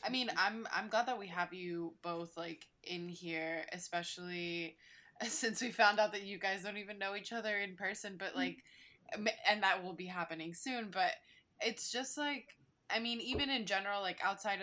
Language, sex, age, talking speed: English, female, 20-39, 195 wpm